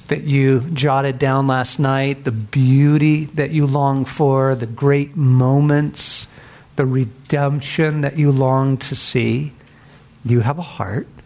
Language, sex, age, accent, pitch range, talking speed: English, male, 50-69, American, 130-155 Hz, 140 wpm